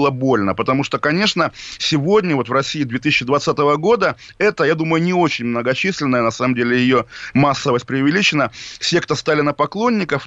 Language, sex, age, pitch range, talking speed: Russian, male, 20-39, 125-155 Hz, 140 wpm